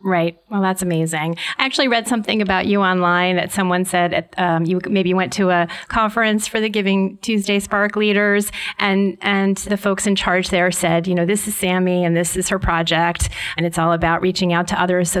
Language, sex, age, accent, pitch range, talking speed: English, female, 30-49, American, 180-235 Hz, 215 wpm